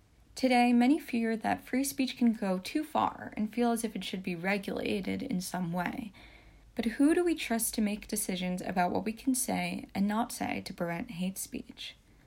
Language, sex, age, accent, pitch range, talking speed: English, female, 10-29, American, 185-245 Hz, 200 wpm